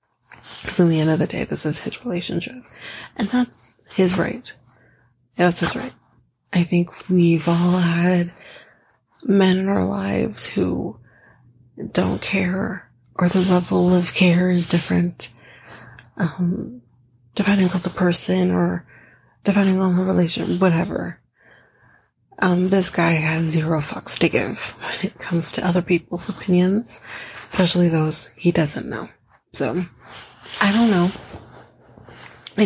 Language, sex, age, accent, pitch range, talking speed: English, female, 30-49, American, 165-185 Hz, 135 wpm